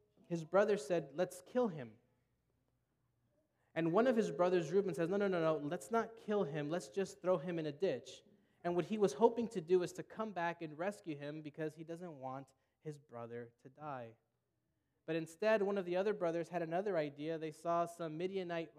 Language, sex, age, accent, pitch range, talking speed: English, male, 20-39, American, 145-190 Hz, 205 wpm